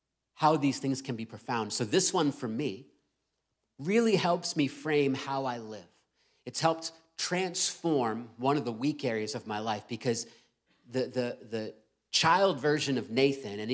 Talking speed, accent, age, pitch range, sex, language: 165 wpm, American, 30-49, 130-160 Hz, male, English